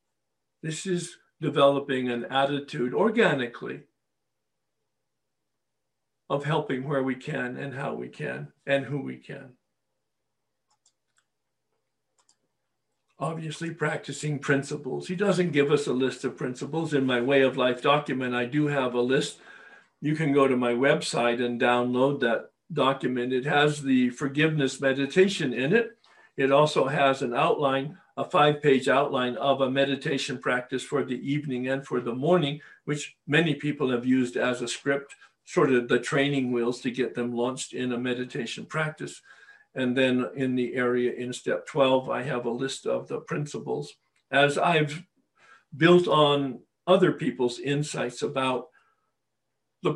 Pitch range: 125-150 Hz